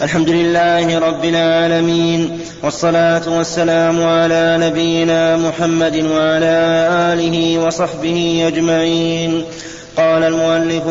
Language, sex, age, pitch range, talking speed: Arabic, male, 30-49, 165-175 Hz, 85 wpm